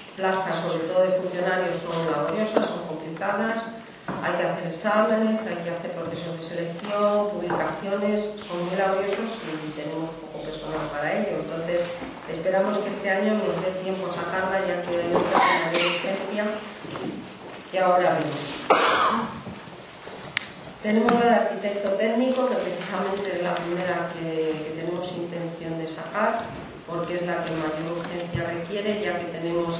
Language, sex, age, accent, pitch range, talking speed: Spanish, female, 40-59, Spanish, 165-195 Hz, 150 wpm